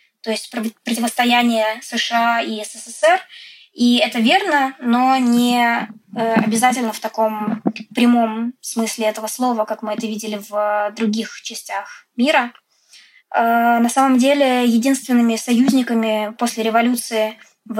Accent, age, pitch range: native, 20-39, 225-255 Hz